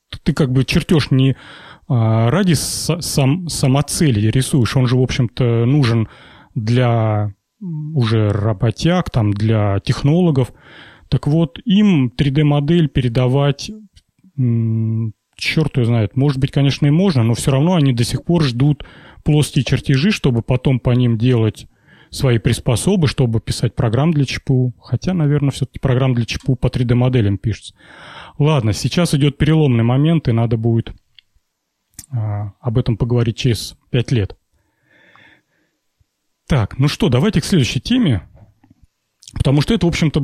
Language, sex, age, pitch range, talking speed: Russian, male, 30-49, 115-150 Hz, 135 wpm